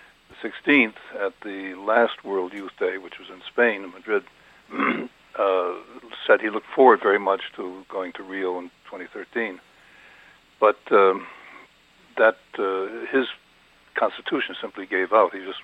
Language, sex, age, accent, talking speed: English, male, 60-79, American, 140 wpm